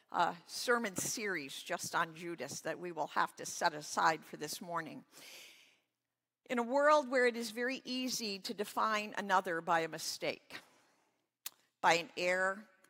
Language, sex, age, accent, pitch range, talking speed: English, female, 50-69, American, 205-255 Hz, 160 wpm